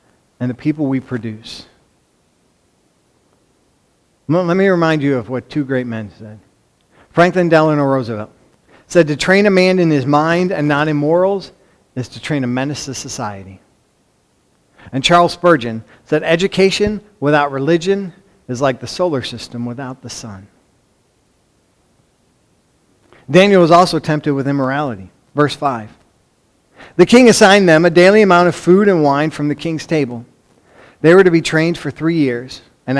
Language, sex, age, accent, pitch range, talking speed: English, male, 50-69, American, 130-170 Hz, 155 wpm